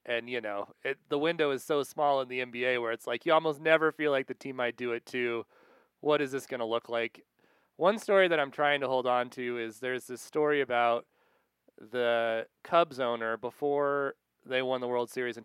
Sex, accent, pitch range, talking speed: male, American, 120-150 Hz, 220 wpm